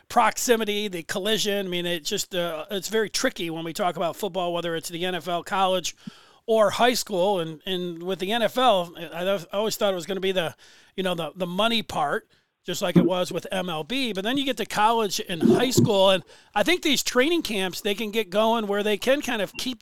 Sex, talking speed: male, 225 wpm